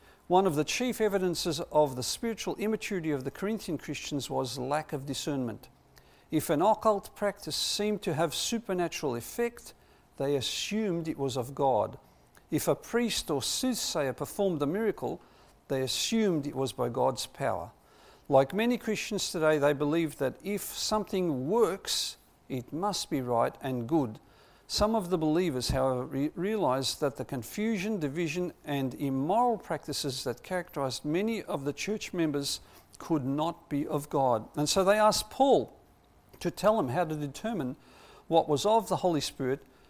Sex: male